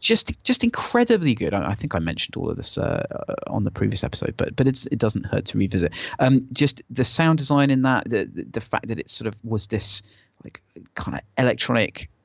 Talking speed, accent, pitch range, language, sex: 220 wpm, British, 100-120 Hz, English, male